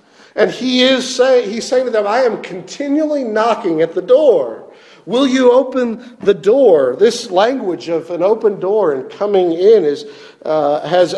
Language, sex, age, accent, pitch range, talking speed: English, male, 50-69, American, 165-260 Hz, 170 wpm